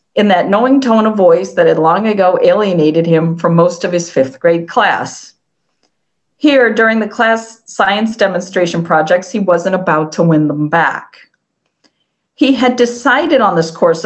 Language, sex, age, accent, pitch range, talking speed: English, female, 50-69, American, 170-225 Hz, 165 wpm